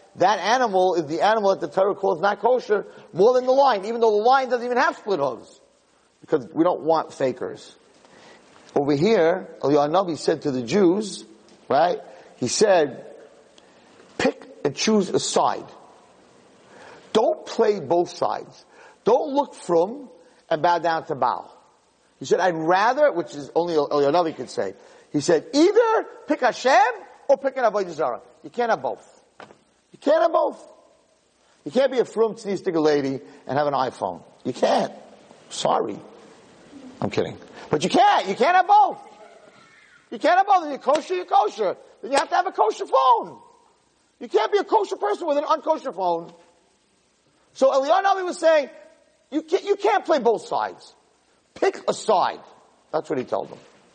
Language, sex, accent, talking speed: English, male, American, 170 wpm